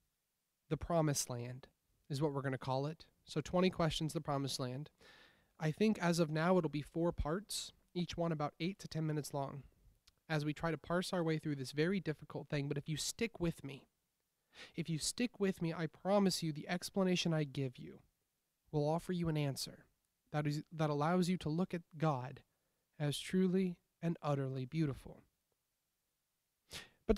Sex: male